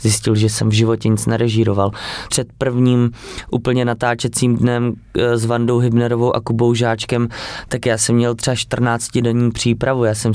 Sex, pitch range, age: male, 115-120 Hz, 20-39